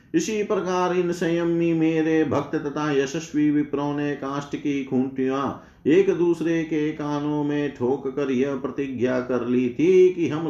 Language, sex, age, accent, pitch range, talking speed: Hindi, male, 50-69, native, 125-160 Hz, 155 wpm